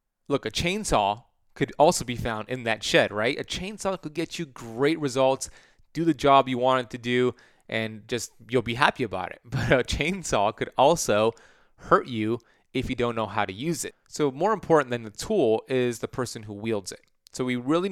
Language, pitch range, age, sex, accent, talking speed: English, 115-140 Hz, 30-49, male, American, 210 wpm